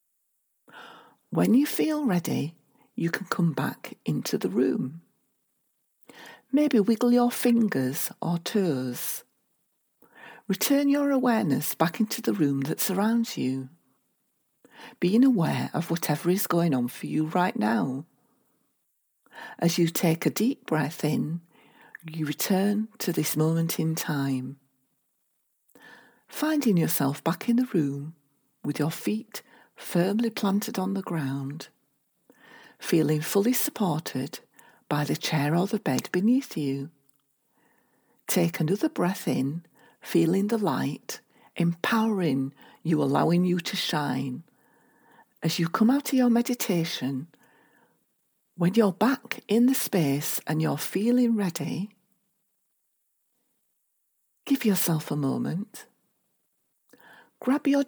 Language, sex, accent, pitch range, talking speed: English, female, British, 155-225 Hz, 115 wpm